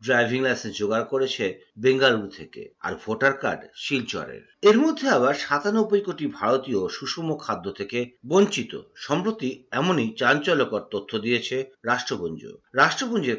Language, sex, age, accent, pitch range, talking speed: Bengali, male, 50-69, native, 120-190 Hz, 70 wpm